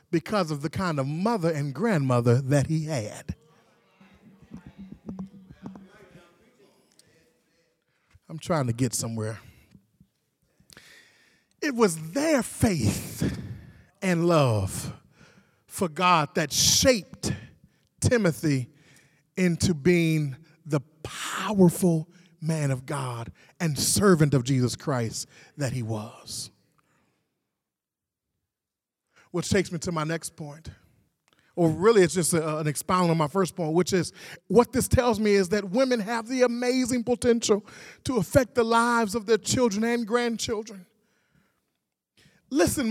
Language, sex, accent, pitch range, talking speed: English, male, American, 160-245 Hz, 115 wpm